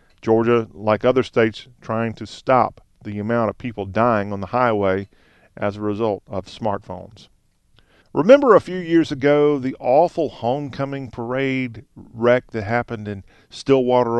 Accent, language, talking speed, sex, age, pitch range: American, English, 145 wpm, male, 40-59, 105-125 Hz